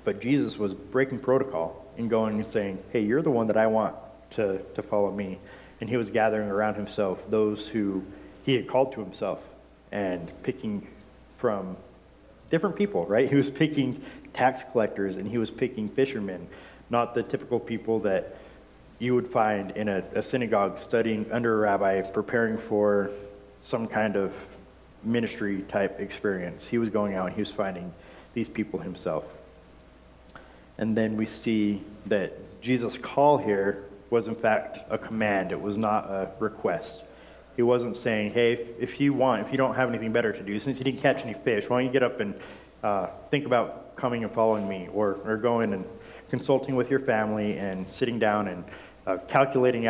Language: English